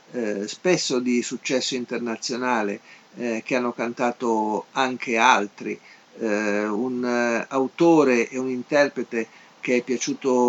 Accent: native